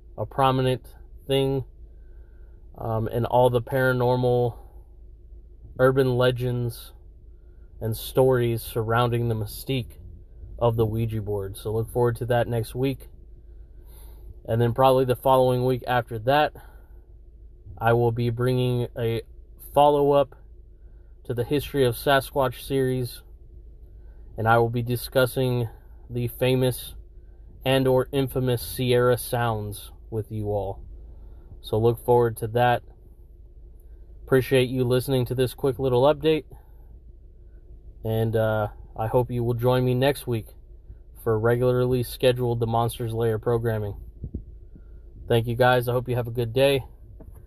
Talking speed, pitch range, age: 130 wpm, 90-130 Hz, 30-49